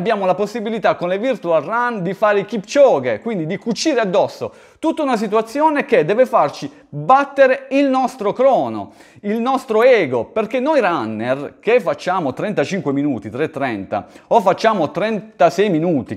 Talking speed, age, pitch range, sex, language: 150 wpm, 30-49, 150-245 Hz, male, Italian